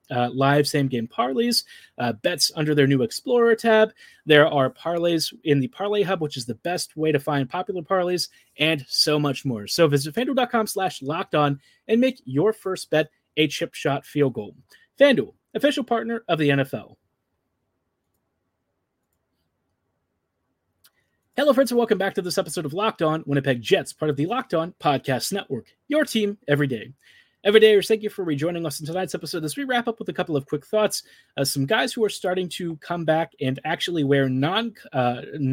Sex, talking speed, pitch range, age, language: male, 185 wpm, 140-190 Hz, 30-49, English